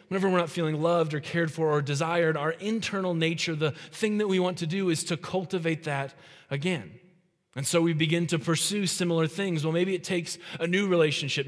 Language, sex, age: English, male, 20-39